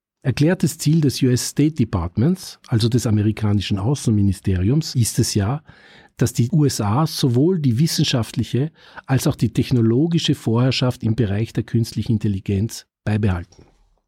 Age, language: 50-69, German